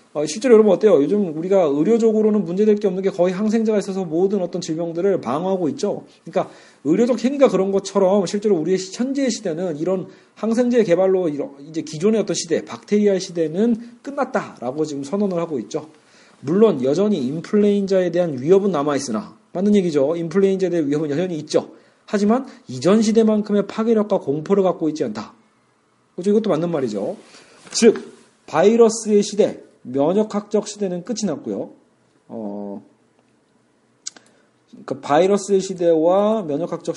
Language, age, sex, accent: Korean, 40-59, male, native